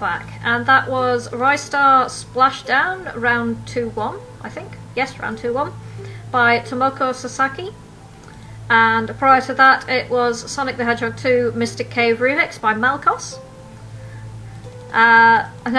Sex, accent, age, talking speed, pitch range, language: female, British, 40-59, 120 wpm, 225-270 Hz, English